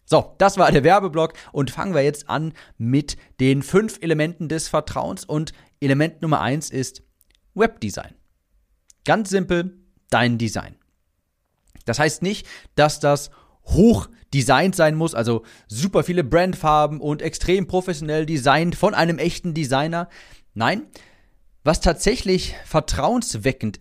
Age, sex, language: 40-59, male, German